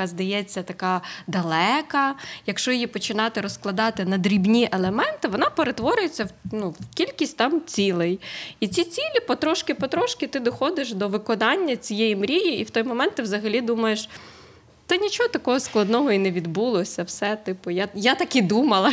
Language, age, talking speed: Ukrainian, 20-39, 155 wpm